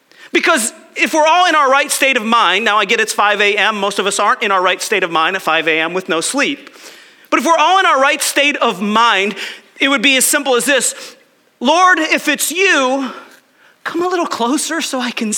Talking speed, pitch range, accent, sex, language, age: 235 wpm, 255-335 Hz, American, male, English, 40-59